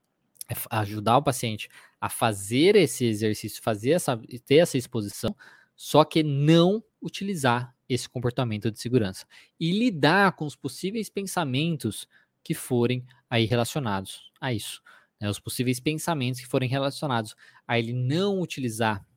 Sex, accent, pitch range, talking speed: male, Brazilian, 115-165 Hz, 140 wpm